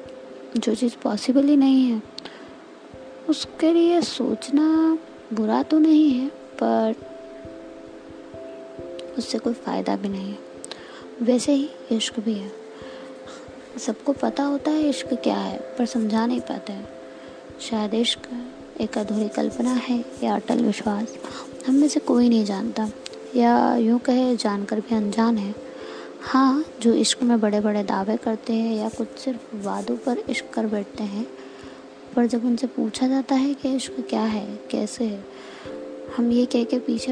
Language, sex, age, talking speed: Hindi, female, 20-39, 150 wpm